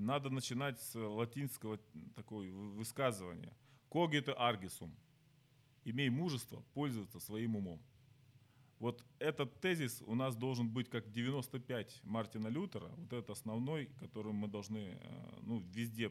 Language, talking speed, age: Ukrainian, 125 wpm, 30-49